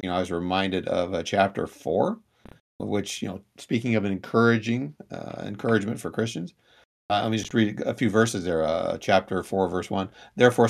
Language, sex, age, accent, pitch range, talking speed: English, male, 50-69, American, 95-115 Hz, 195 wpm